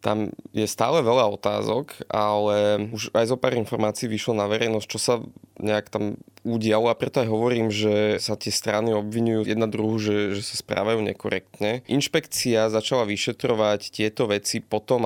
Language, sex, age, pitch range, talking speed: Slovak, male, 20-39, 105-115 Hz, 165 wpm